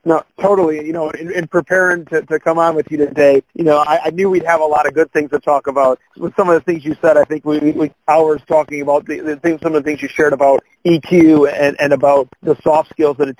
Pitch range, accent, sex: 140-160 Hz, American, male